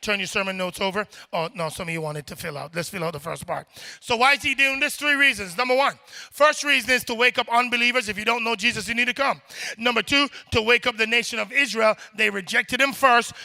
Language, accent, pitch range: English, American, 215-275 Hz